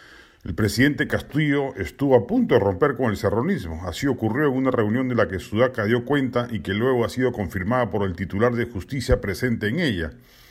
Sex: male